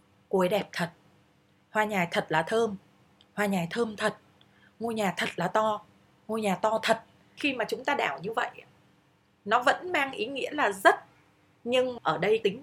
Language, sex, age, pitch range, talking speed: Vietnamese, female, 20-39, 170-230 Hz, 185 wpm